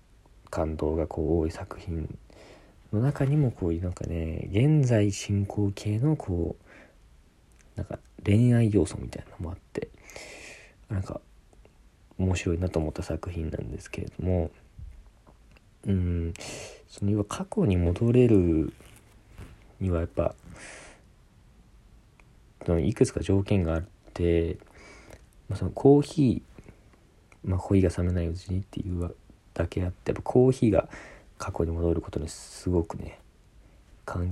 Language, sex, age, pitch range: Japanese, male, 40-59, 85-110 Hz